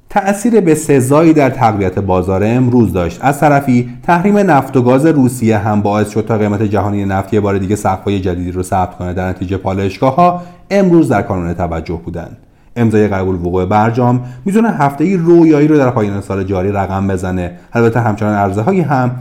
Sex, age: male, 40-59